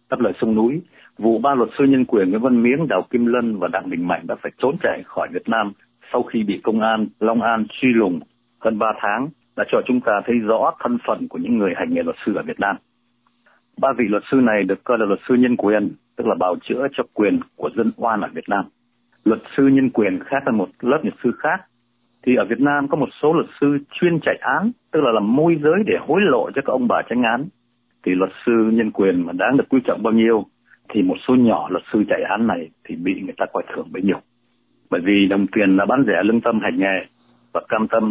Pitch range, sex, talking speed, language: 110-130 Hz, male, 255 wpm, Vietnamese